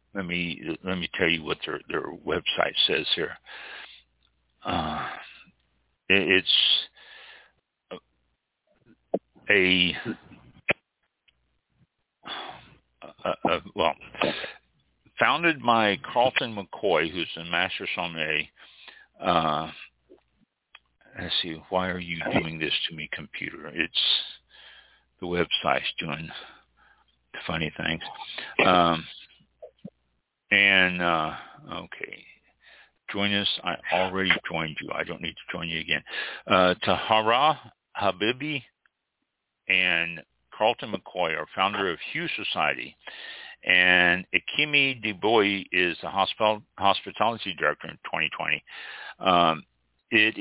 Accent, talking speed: American, 100 wpm